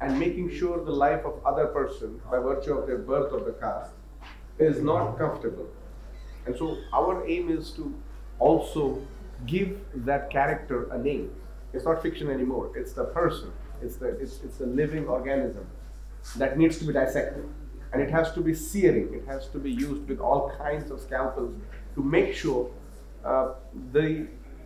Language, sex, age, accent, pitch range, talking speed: English, male, 40-59, Indian, 130-165 Hz, 175 wpm